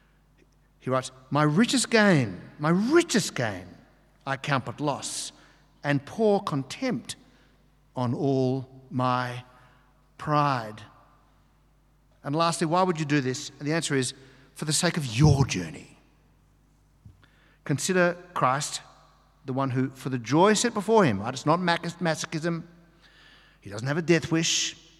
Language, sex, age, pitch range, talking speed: English, male, 60-79, 130-170 Hz, 135 wpm